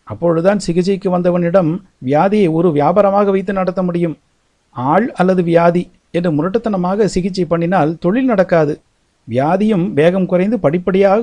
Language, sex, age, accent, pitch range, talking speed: Tamil, male, 60-79, native, 125-200 Hz, 120 wpm